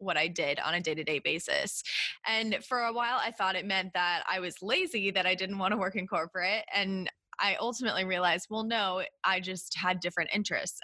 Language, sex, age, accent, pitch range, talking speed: English, female, 20-39, American, 175-210 Hz, 210 wpm